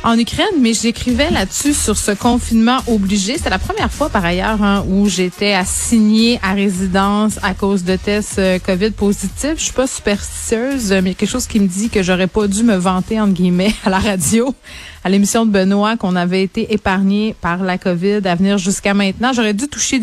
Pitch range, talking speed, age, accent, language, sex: 185-225 Hz, 200 wpm, 30-49, Canadian, French, female